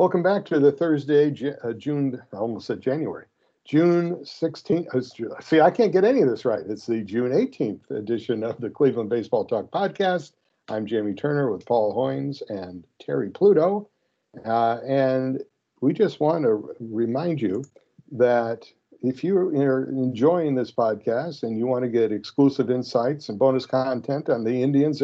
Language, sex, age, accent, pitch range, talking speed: English, male, 60-79, American, 115-145 Hz, 165 wpm